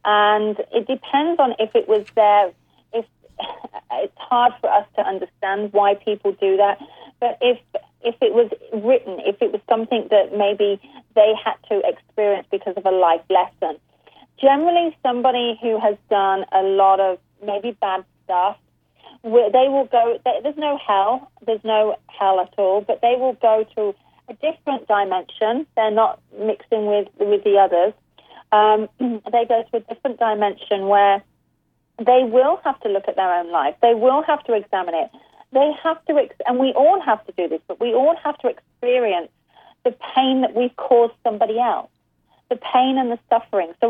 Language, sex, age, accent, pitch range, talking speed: English, female, 30-49, British, 210-265 Hz, 175 wpm